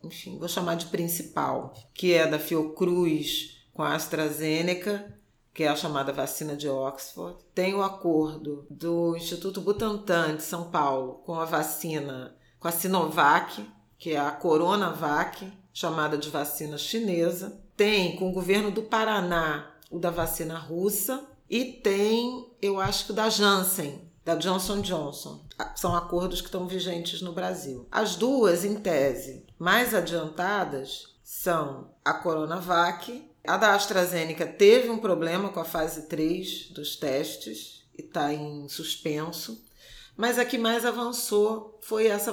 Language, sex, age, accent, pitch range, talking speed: Portuguese, female, 40-59, Brazilian, 160-195 Hz, 145 wpm